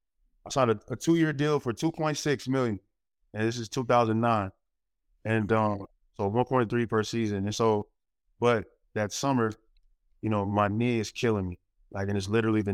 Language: English